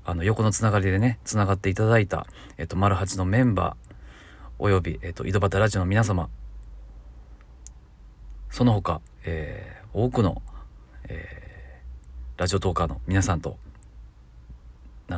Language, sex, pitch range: Japanese, male, 65-100 Hz